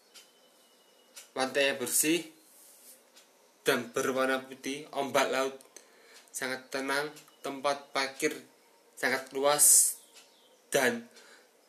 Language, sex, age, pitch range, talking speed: Indonesian, male, 20-39, 125-150 Hz, 70 wpm